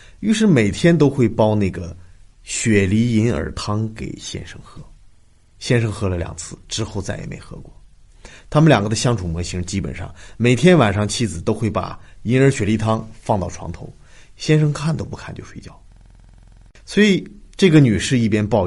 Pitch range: 90-135 Hz